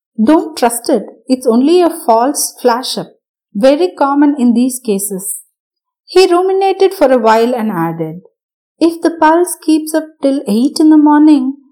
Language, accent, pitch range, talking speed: Tamil, native, 230-315 Hz, 160 wpm